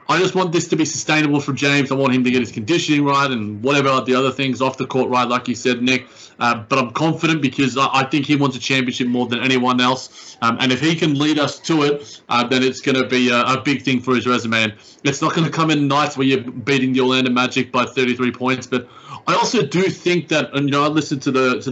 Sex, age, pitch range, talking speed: male, 20-39, 125-145 Hz, 275 wpm